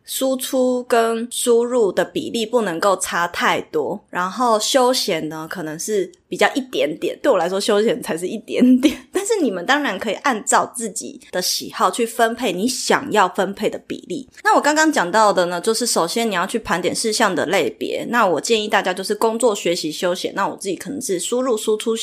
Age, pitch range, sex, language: 20-39, 195-255 Hz, female, Chinese